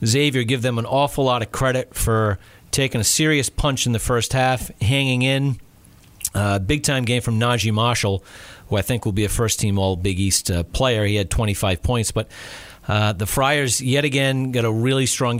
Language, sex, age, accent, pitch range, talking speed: English, male, 40-59, American, 100-125 Hz, 195 wpm